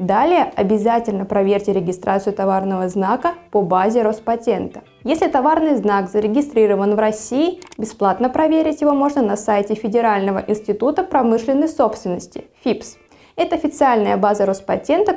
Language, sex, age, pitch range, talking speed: Russian, female, 20-39, 205-275 Hz, 120 wpm